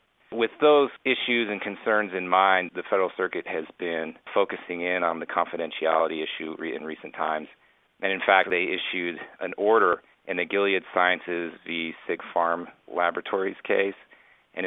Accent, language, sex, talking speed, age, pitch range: American, English, male, 155 wpm, 40-59, 85-110 Hz